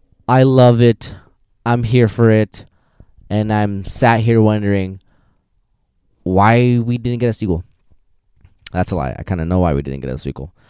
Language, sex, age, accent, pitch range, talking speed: English, male, 20-39, American, 90-115 Hz, 175 wpm